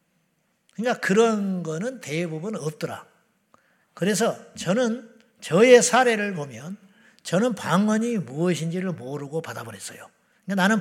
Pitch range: 160-205 Hz